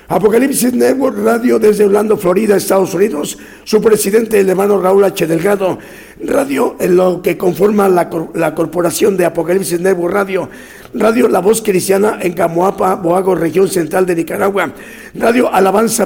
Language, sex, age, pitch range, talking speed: Spanish, male, 50-69, 190-220 Hz, 155 wpm